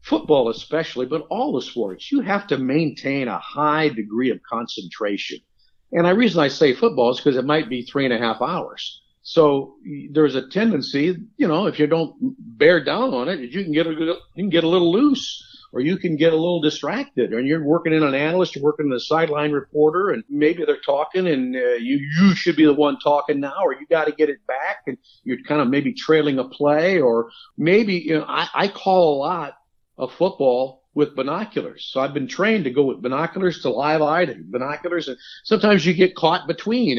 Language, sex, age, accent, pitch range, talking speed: English, male, 50-69, American, 145-185 Hz, 215 wpm